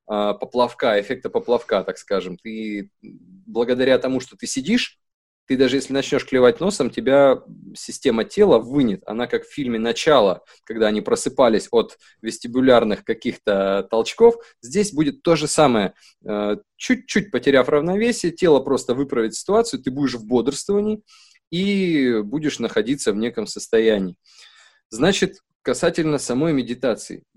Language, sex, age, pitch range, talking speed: Russian, male, 20-39, 115-190 Hz, 130 wpm